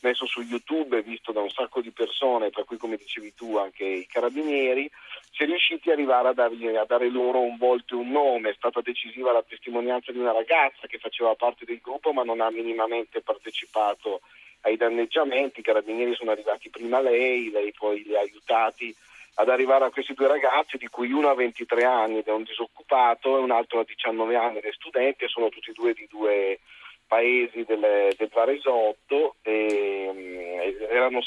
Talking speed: 190 wpm